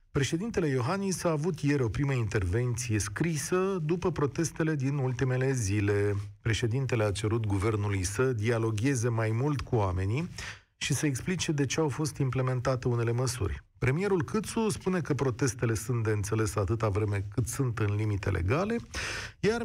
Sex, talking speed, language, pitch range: male, 155 wpm, Romanian, 105-140 Hz